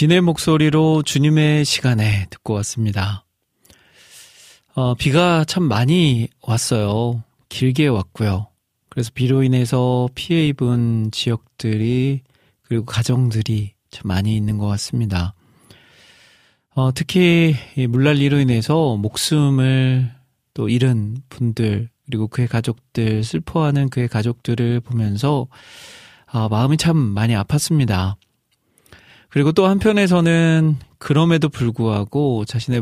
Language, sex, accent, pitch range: Korean, male, native, 110-140 Hz